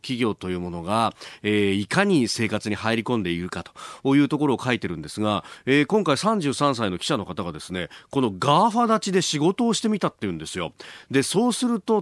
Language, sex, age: Japanese, male, 30-49